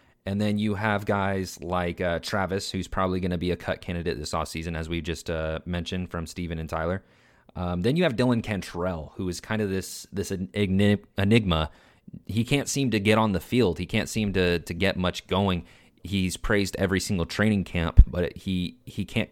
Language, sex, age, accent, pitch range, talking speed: English, male, 30-49, American, 85-105 Hz, 205 wpm